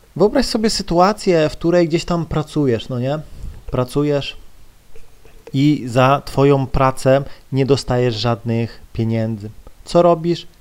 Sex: male